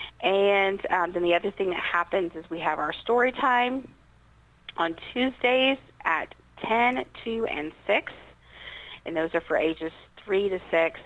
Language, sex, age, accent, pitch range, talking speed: English, female, 40-59, American, 160-210 Hz, 155 wpm